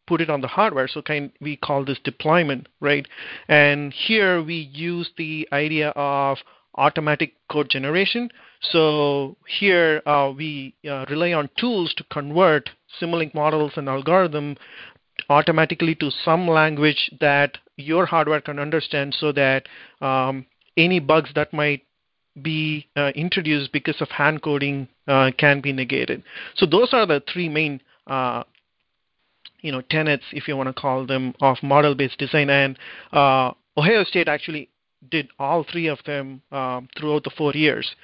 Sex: male